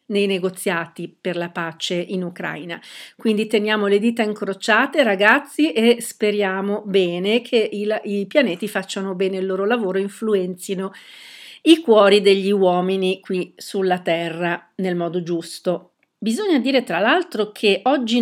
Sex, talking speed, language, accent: female, 135 wpm, Italian, native